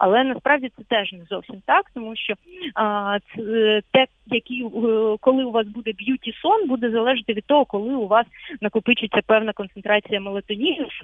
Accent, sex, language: native, female, Ukrainian